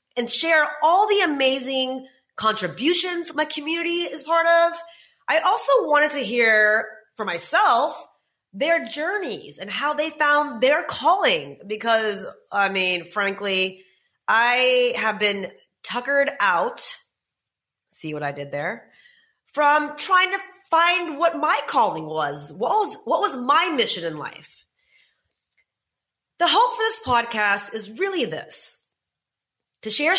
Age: 30-49